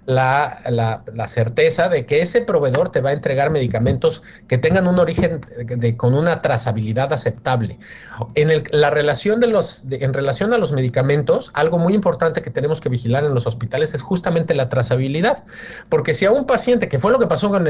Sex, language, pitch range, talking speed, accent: male, Spanish, 130-180 Hz, 205 wpm, Mexican